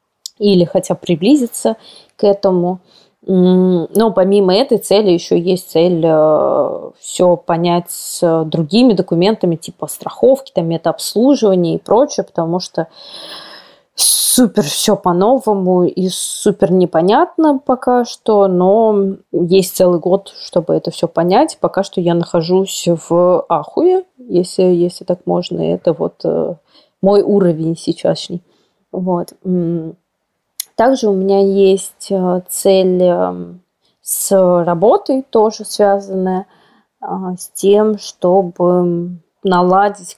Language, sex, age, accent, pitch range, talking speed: Russian, female, 20-39, native, 175-200 Hz, 100 wpm